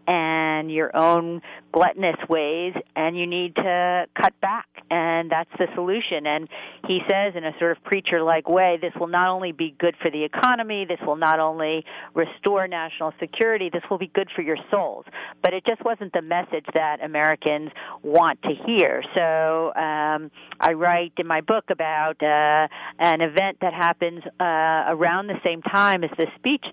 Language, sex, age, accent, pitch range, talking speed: English, female, 50-69, American, 160-180 Hz, 175 wpm